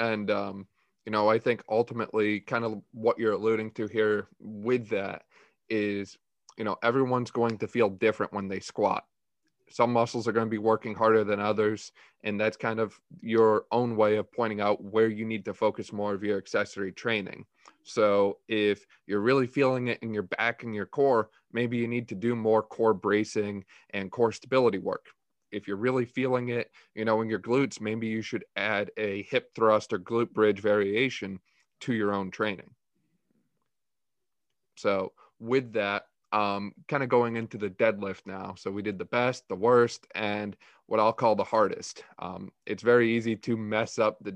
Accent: American